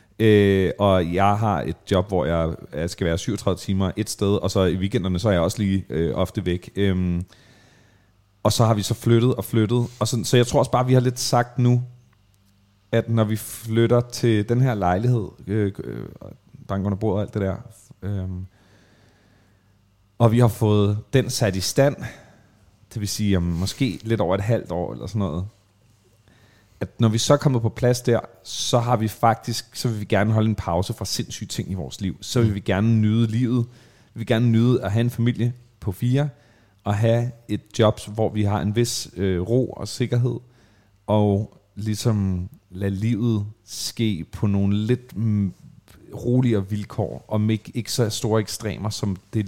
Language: Danish